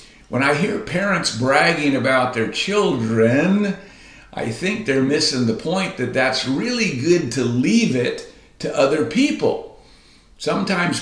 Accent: American